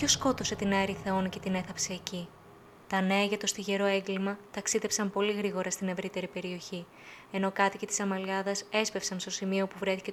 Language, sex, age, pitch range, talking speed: Greek, female, 20-39, 190-210 Hz, 180 wpm